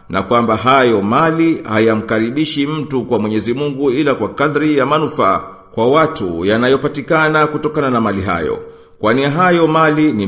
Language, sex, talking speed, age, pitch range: Swahili, male, 145 wpm, 50-69, 115-150 Hz